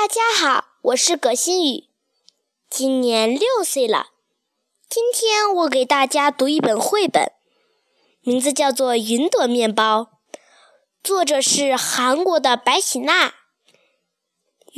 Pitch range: 265-395 Hz